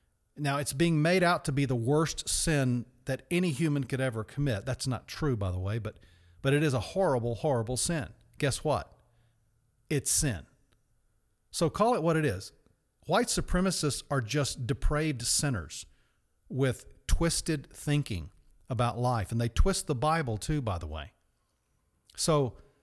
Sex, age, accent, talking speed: male, 40-59, American, 160 wpm